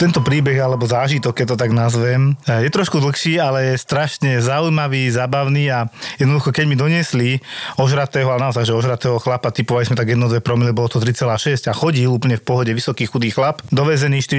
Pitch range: 120-140 Hz